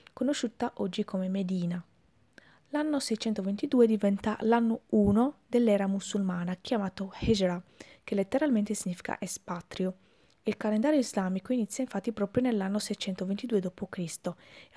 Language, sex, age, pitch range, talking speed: Italian, female, 20-39, 190-230 Hz, 100 wpm